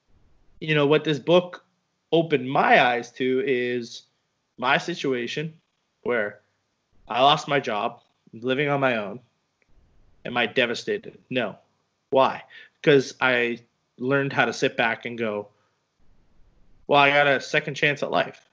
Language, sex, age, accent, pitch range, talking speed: English, male, 20-39, American, 120-155 Hz, 140 wpm